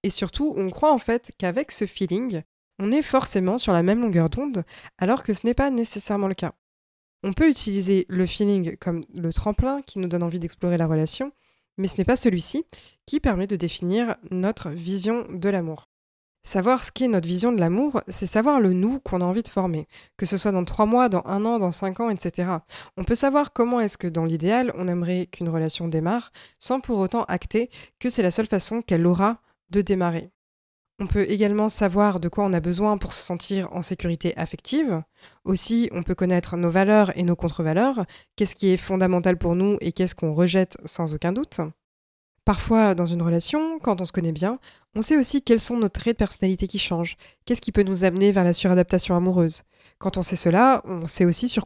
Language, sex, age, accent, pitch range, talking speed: French, female, 20-39, French, 175-220 Hz, 210 wpm